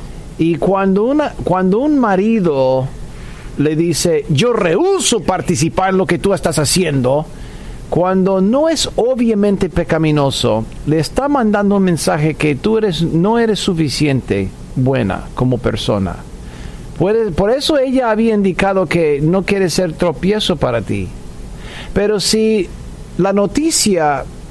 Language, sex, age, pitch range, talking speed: Spanish, male, 50-69, 145-205 Hz, 125 wpm